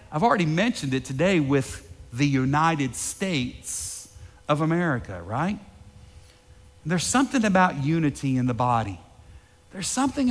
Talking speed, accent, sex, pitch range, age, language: 120 wpm, American, male, 130-200 Hz, 50-69, English